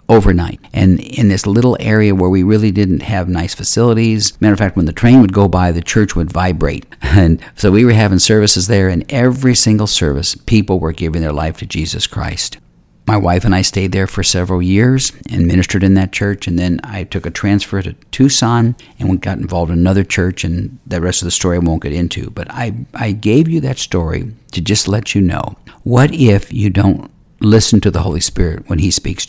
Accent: American